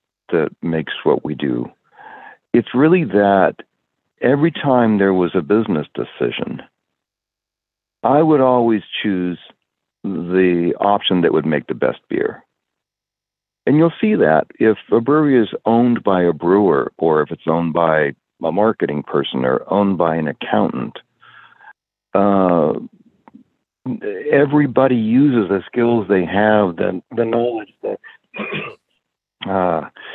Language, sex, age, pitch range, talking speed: English, male, 60-79, 95-160 Hz, 125 wpm